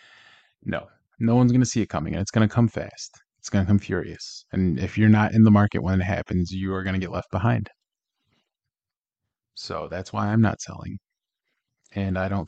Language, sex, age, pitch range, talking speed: English, male, 20-39, 95-110 Hz, 215 wpm